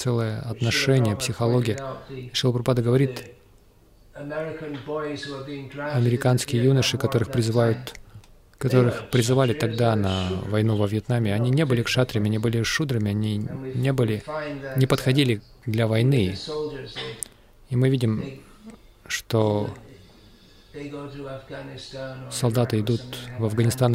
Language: Russian